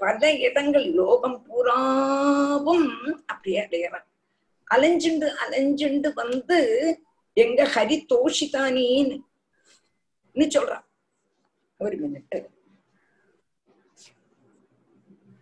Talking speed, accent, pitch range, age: 60 wpm, native, 260-320 Hz, 50-69